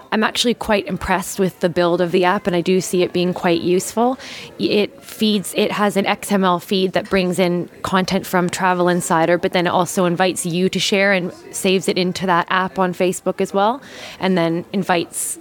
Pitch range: 170-190 Hz